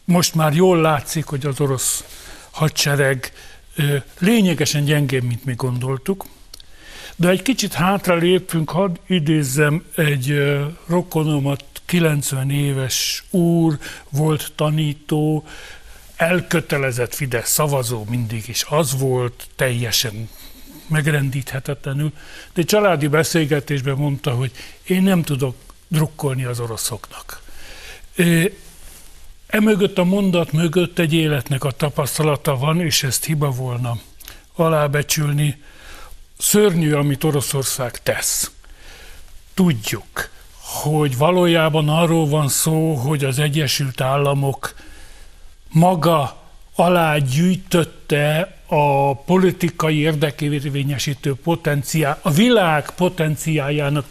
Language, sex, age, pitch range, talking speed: Hungarian, male, 60-79, 135-165 Hz, 95 wpm